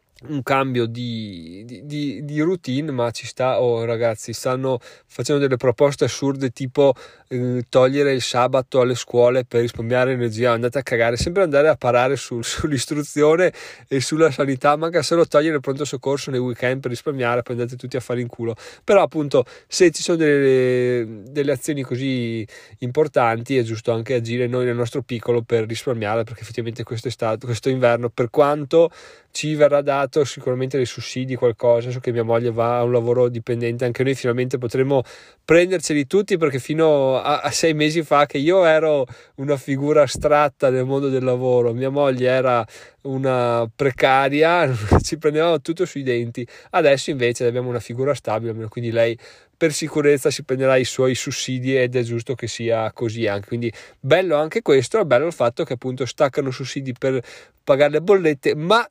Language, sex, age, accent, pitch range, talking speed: Italian, male, 20-39, native, 120-145 Hz, 175 wpm